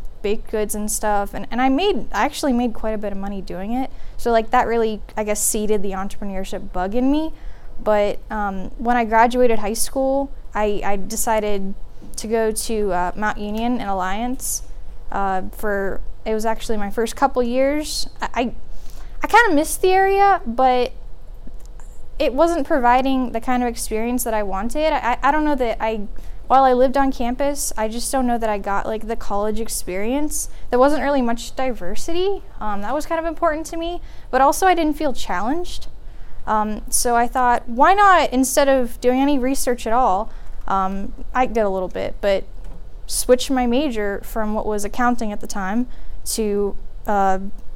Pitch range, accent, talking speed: 210-270 Hz, American, 185 wpm